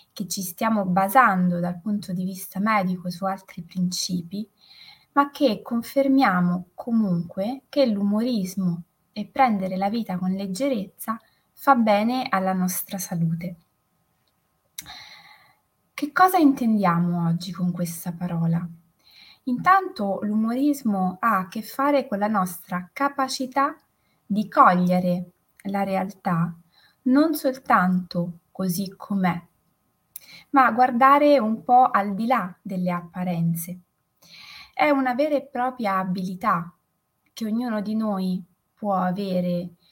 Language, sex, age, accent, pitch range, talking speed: Italian, female, 20-39, native, 180-250 Hz, 110 wpm